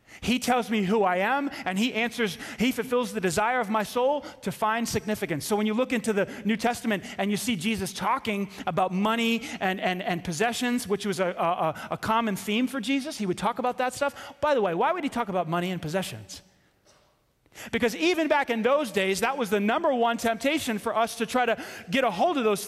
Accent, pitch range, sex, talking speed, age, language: American, 210-280 Hz, male, 230 wpm, 30-49, English